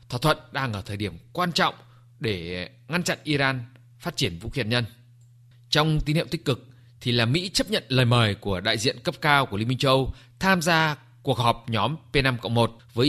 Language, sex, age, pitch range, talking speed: Vietnamese, male, 20-39, 120-155 Hz, 210 wpm